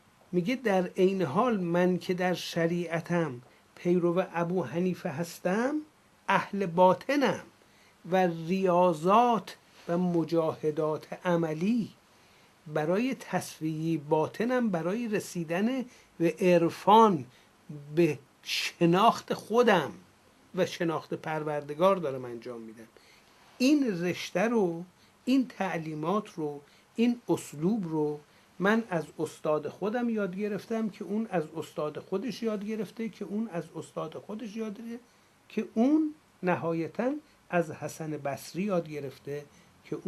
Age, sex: 60-79, male